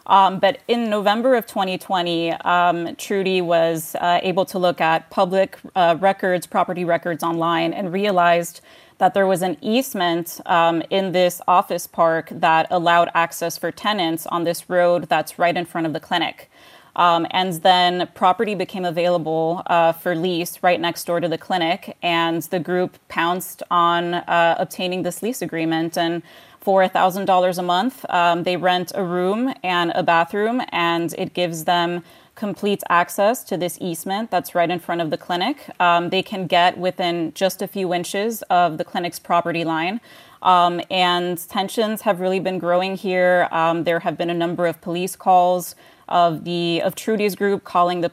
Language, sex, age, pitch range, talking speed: English, female, 20-39, 170-190 Hz, 175 wpm